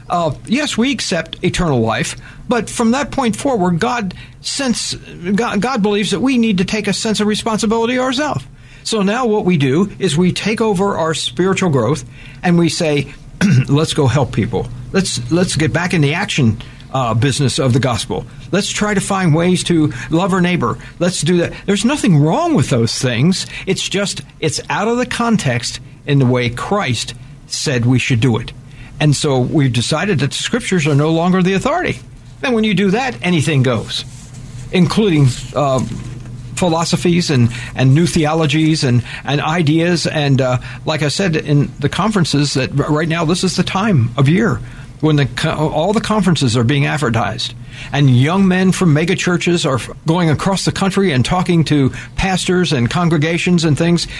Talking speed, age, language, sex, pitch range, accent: 180 wpm, 60-79, English, male, 130-185 Hz, American